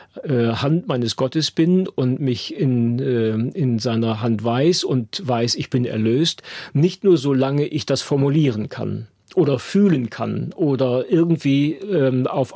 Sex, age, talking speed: male, 40-59, 140 wpm